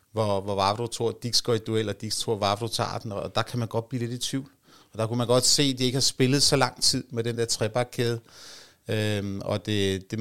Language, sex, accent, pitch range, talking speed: Danish, male, native, 105-125 Hz, 260 wpm